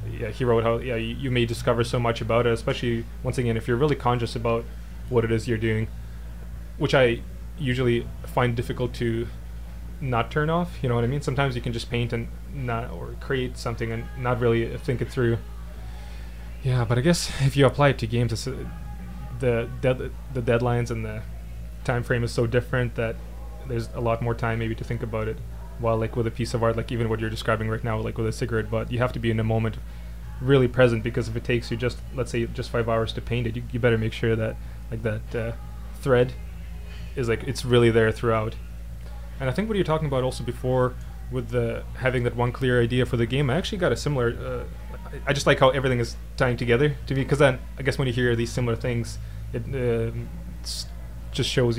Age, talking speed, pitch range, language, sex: 20-39, 230 wpm, 110-125 Hz, English, male